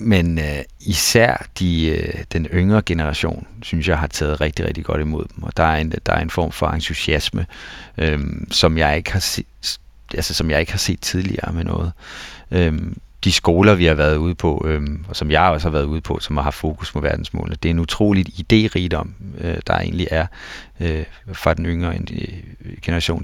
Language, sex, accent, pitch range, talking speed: Danish, male, native, 80-95 Hz, 200 wpm